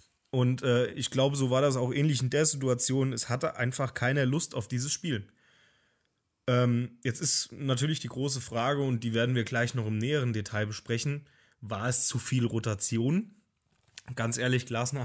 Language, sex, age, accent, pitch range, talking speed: German, male, 20-39, German, 115-150 Hz, 180 wpm